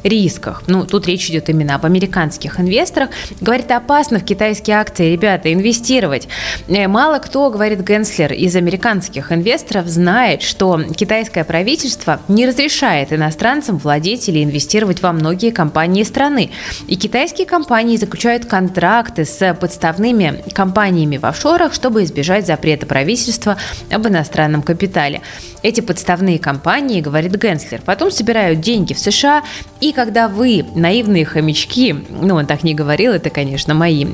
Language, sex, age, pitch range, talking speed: Russian, female, 20-39, 160-225 Hz, 135 wpm